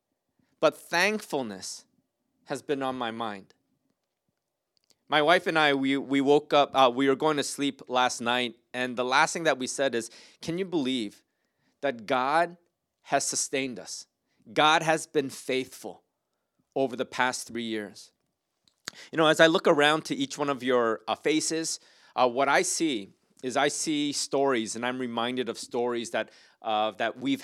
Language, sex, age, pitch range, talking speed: English, male, 30-49, 125-150 Hz, 170 wpm